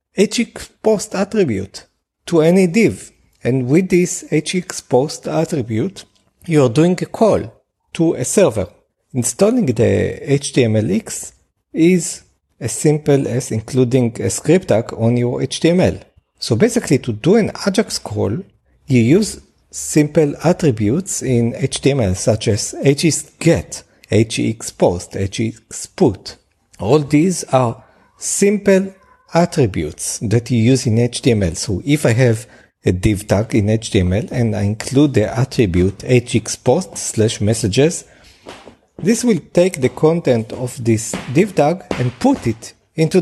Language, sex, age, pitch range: English, male, 50-69, 110-165 Hz